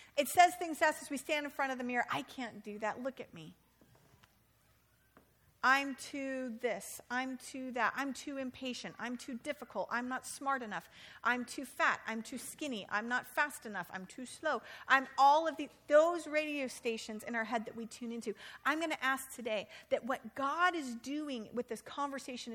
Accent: American